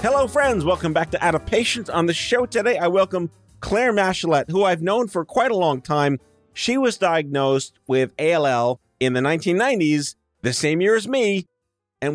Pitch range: 150-210 Hz